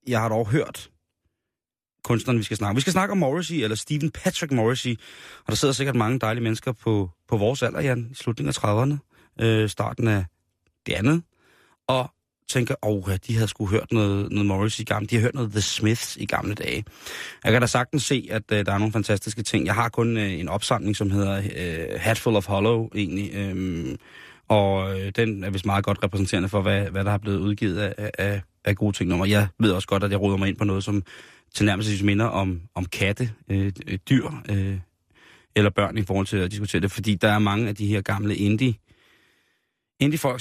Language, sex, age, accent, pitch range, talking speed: Danish, male, 30-49, native, 100-120 Hz, 215 wpm